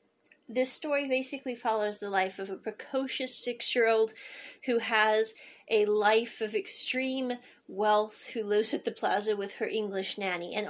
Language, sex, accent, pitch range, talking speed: English, female, American, 205-255 Hz, 150 wpm